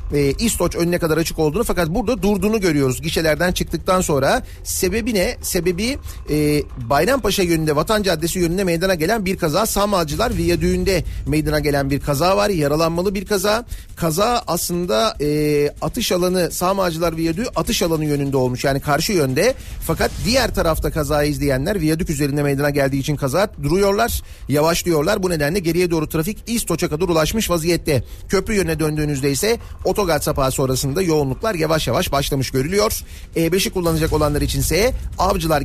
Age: 40-59